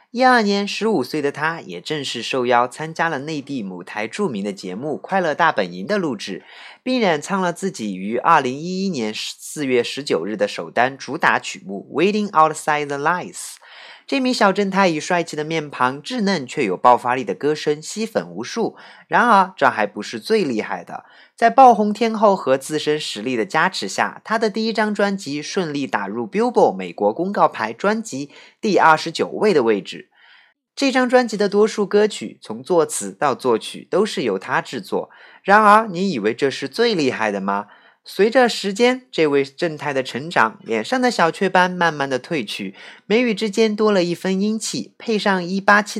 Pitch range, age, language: 135-215 Hz, 30-49, Chinese